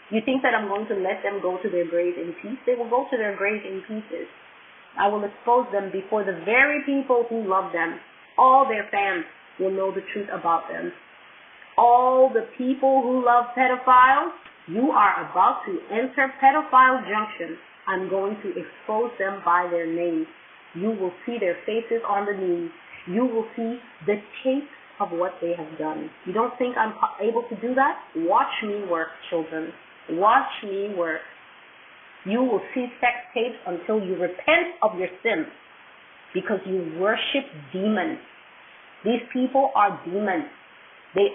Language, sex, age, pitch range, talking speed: English, female, 30-49, 185-255 Hz, 170 wpm